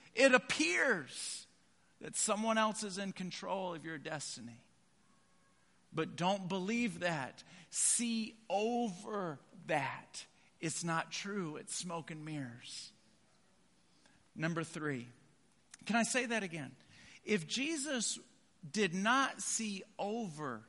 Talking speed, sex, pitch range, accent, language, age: 110 wpm, male, 175-265 Hz, American, English, 50-69